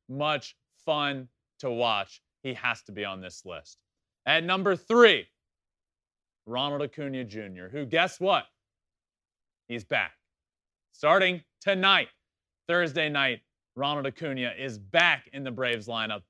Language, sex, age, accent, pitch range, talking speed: English, male, 30-49, American, 115-165 Hz, 125 wpm